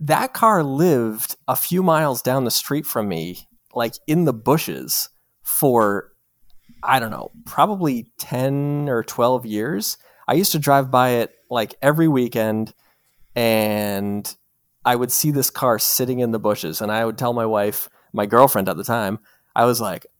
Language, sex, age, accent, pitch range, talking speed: English, male, 30-49, American, 110-140 Hz, 170 wpm